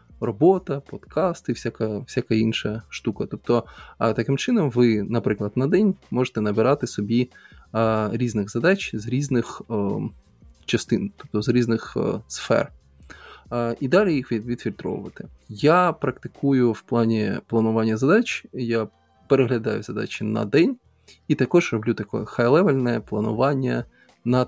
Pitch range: 110-135 Hz